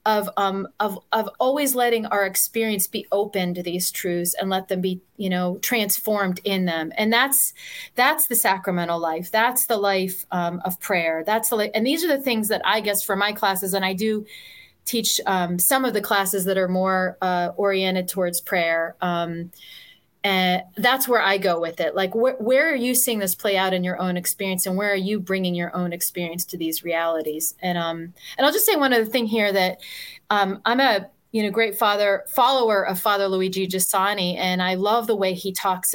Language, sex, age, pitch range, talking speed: English, female, 30-49, 185-225 Hz, 210 wpm